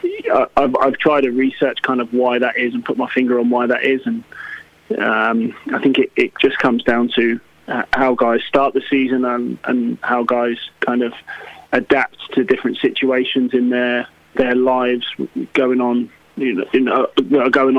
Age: 20-39